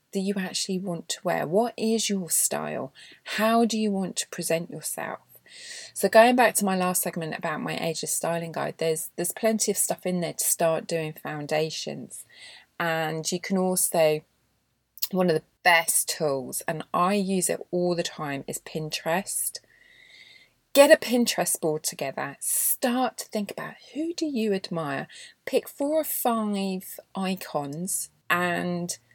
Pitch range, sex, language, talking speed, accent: 165-220 Hz, female, English, 155 wpm, British